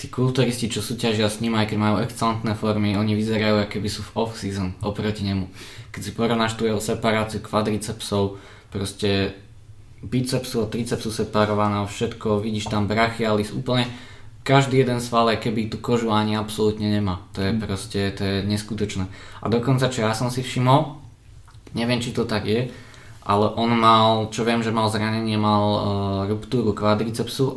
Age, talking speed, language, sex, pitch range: 20-39, 165 wpm, Czech, male, 105-115 Hz